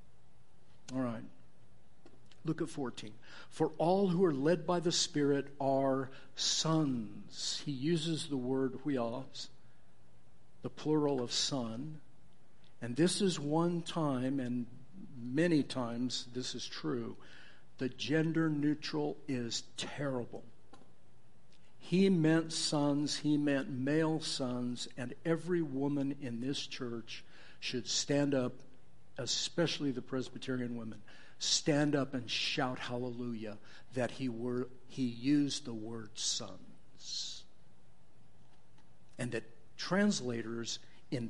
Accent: American